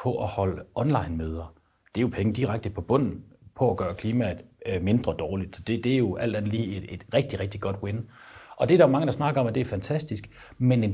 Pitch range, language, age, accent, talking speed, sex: 105-140 Hz, Danish, 30-49, native, 250 wpm, male